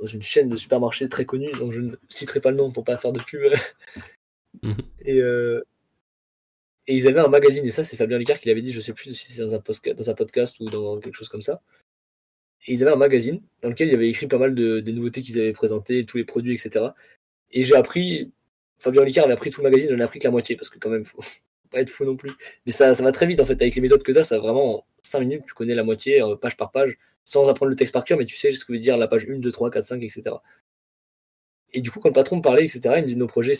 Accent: French